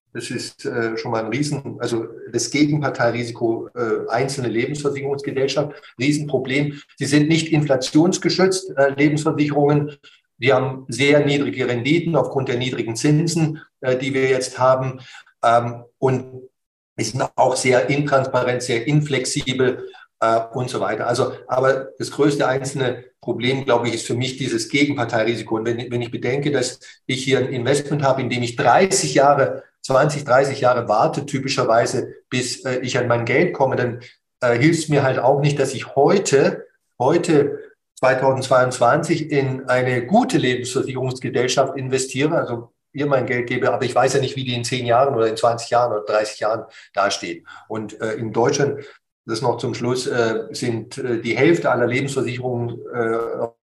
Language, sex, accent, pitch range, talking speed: German, male, German, 120-145 Hz, 160 wpm